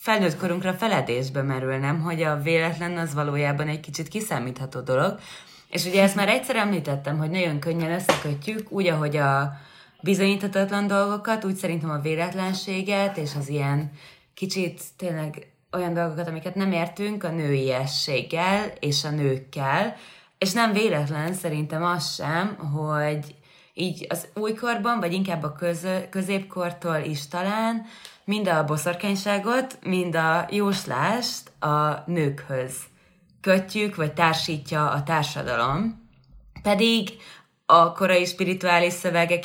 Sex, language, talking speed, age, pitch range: female, Hungarian, 125 wpm, 20-39, 150-185 Hz